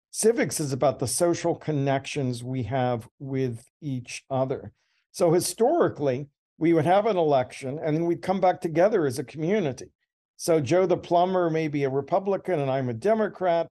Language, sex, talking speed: English, male, 170 wpm